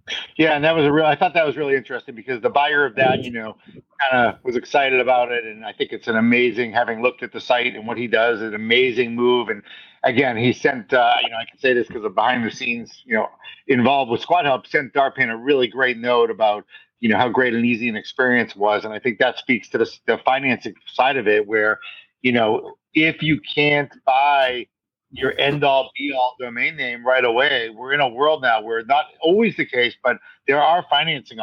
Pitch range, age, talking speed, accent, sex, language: 120-160 Hz, 50-69, 235 wpm, American, male, English